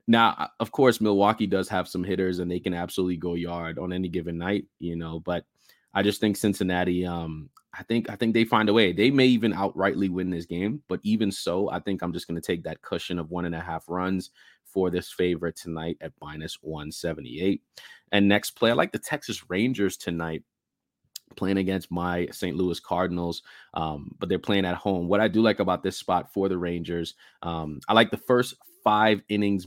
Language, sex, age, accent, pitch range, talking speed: English, male, 20-39, American, 85-100 Hz, 215 wpm